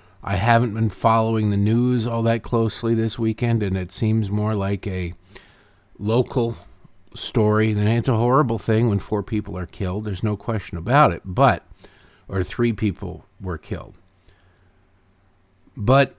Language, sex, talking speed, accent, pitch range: English, male, 150 wpm, American, 95-115 Hz